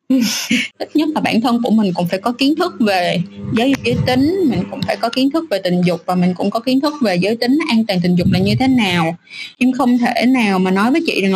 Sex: female